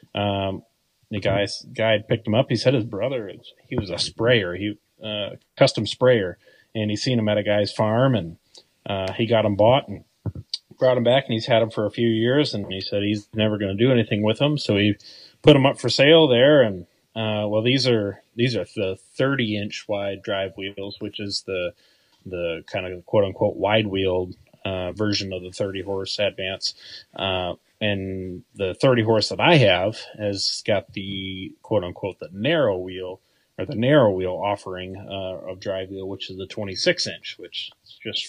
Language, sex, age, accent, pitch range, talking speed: English, male, 30-49, American, 95-120 Hz, 200 wpm